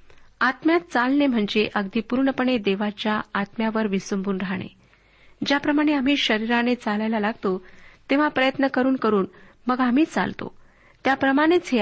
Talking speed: 115 wpm